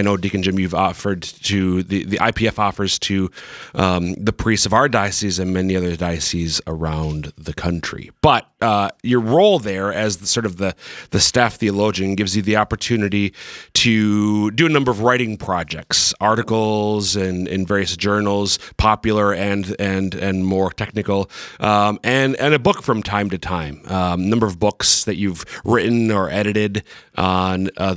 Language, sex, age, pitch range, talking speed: English, male, 30-49, 95-115 Hz, 175 wpm